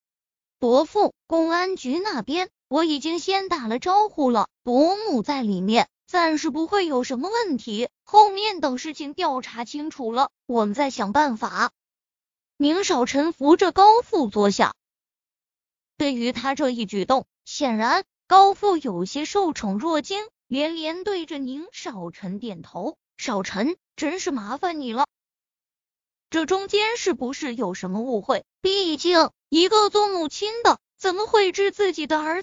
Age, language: 20-39, Chinese